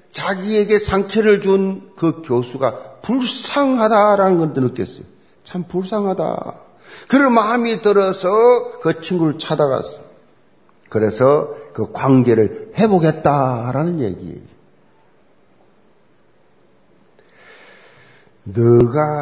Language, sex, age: Korean, male, 50-69